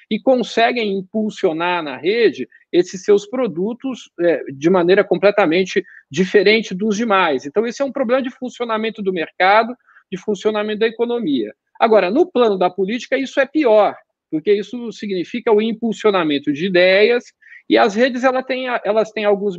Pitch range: 180-250 Hz